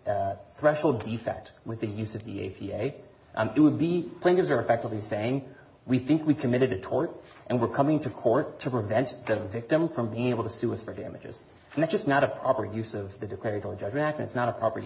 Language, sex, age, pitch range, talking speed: English, male, 30-49, 110-155 Hz, 230 wpm